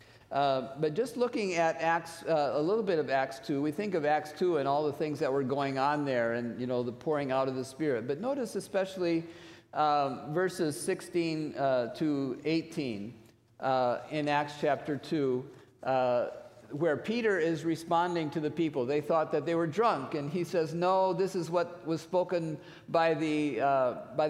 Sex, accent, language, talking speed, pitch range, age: male, American, English, 185 wpm, 140-175 Hz, 50-69